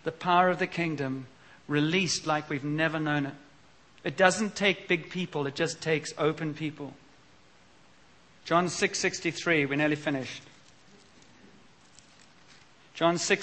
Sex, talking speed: male, 120 wpm